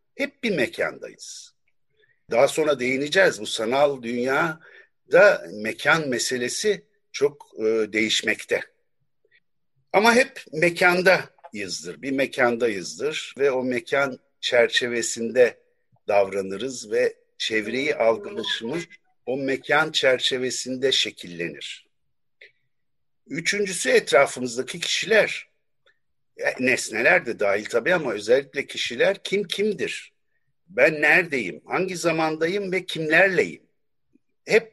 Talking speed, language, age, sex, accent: 85 wpm, Turkish, 60-79, male, native